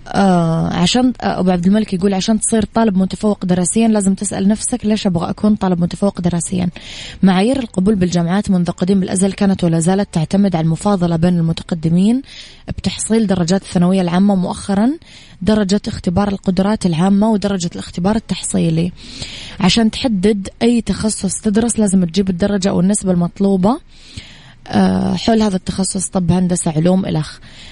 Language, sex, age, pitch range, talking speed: English, female, 20-39, 175-205 Hz, 135 wpm